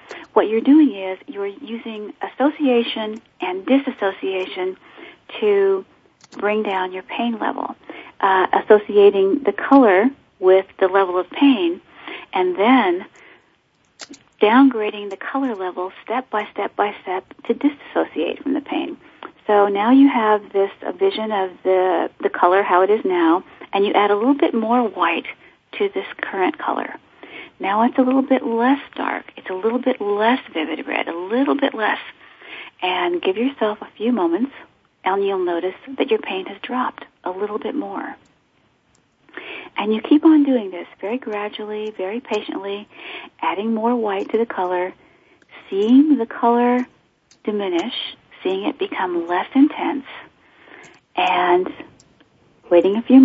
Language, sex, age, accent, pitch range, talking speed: English, female, 40-59, American, 200-305 Hz, 150 wpm